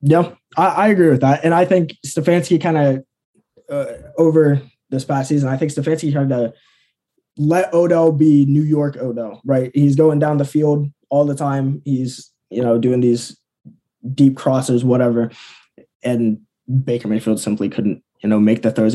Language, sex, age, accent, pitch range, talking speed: English, male, 20-39, American, 120-150 Hz, 170 wpm